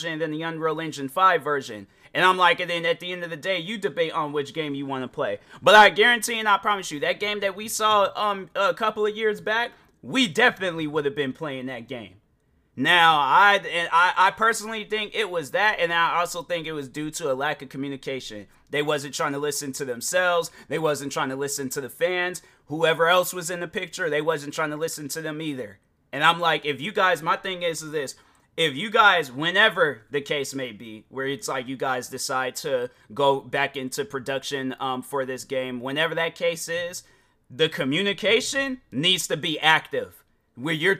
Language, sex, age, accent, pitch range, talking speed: English, male, 30-49, American, 145-195 Hz, 215 wpm